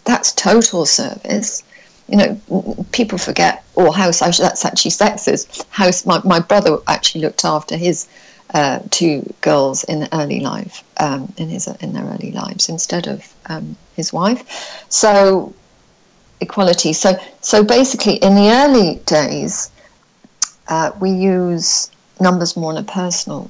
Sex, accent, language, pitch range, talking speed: female, British, English, 175-215 Hz, 140 wpm